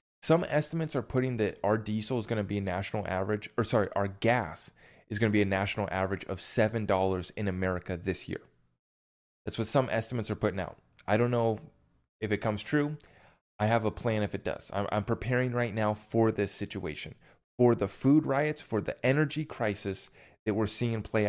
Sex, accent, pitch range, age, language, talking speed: male, American, 95-115 Hz, 30-49, English, 205 wpm